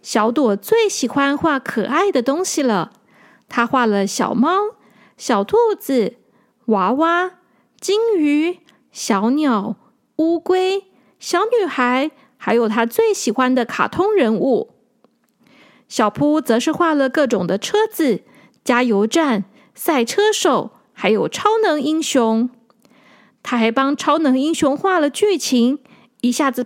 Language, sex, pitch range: Chinese, female, 235-330 Hz